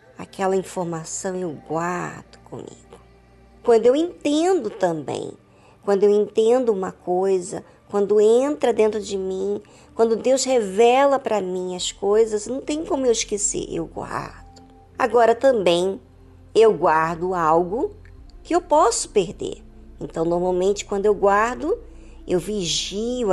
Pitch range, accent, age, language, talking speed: 180-255 Hz, Brazilian, 50-69, Portuguese, 125 wpm